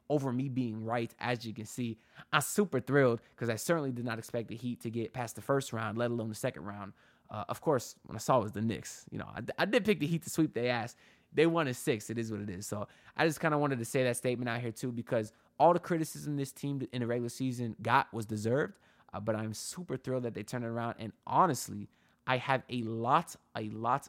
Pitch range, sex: 115-135 Hz, male